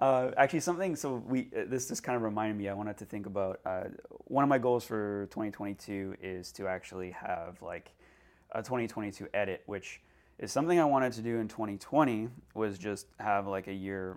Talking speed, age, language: 195 wpm, 30-49, English